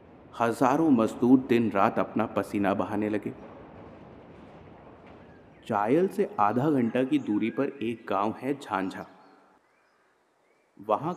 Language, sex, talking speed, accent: Hindi, male, 105 wpm, native